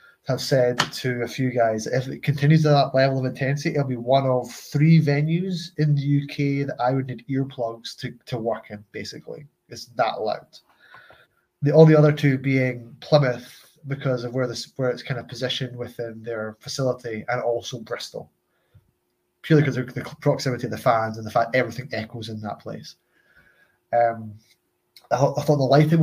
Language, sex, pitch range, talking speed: English, male, 120-145 Hz, 185 wpm